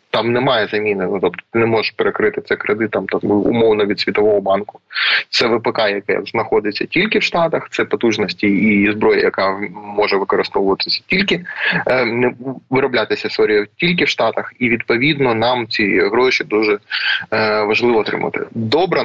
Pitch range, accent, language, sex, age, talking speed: 110-155 Hz, native, Ukrainian, male, 20-39, 150 wpm